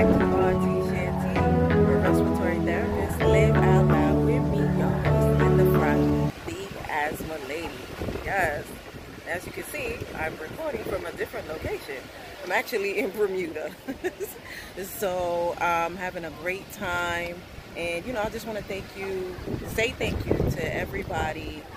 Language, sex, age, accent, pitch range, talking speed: English, female, 20-39, American, 160-205 Hz, 145 wpm